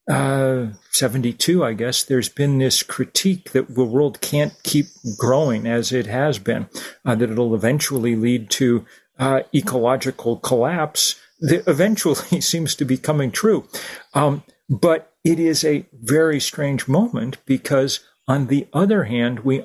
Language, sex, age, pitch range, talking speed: English, male, 40-59, 125-150 Hz, 145 wpm